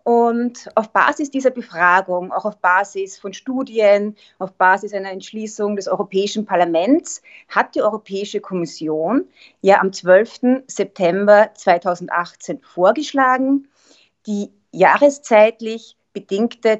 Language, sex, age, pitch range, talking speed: German, female, 30-49, 190-250 Hz, 105 wpm